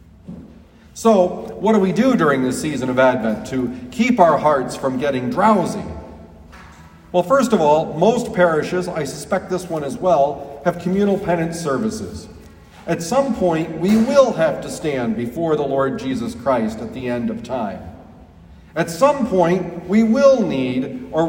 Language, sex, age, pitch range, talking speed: English, male, 40-59, 130-205 Hz, 165 wpm